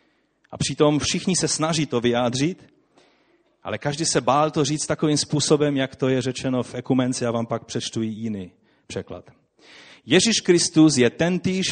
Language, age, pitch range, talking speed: Czech, 30-49, 110-155 Hz, 160 wpm